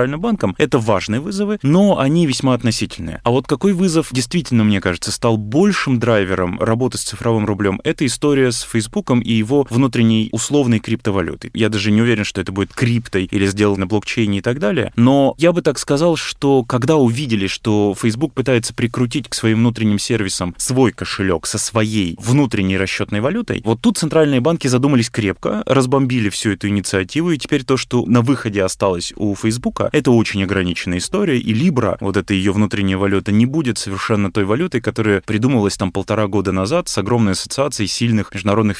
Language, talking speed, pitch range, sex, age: Russian, 175 wpm, 100-130 Hz, male, 20-39